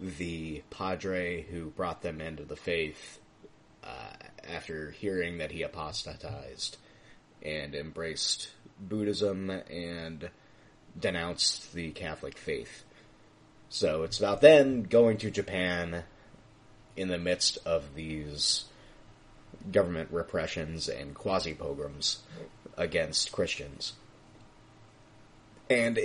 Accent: American